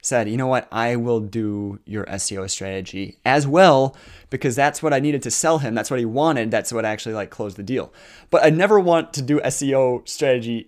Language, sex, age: English, male, 20-39